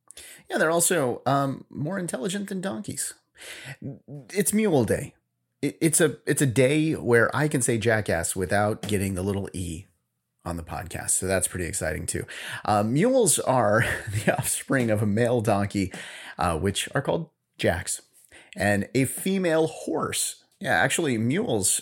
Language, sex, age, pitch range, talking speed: English, male, 30-49, 100-155 Hz, 155 wpm